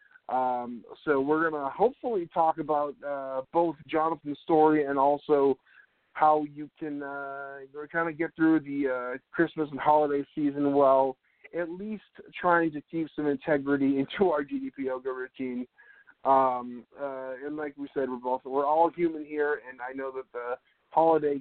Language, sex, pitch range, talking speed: English, male, 130-155 Hz, 165 wpm